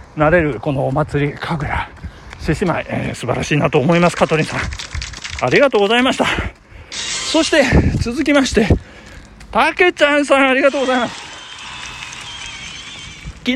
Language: Japanese